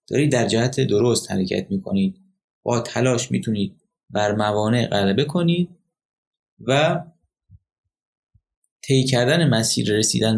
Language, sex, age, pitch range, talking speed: Persian, male, 30-49, 115-150 Hz, 110 wpm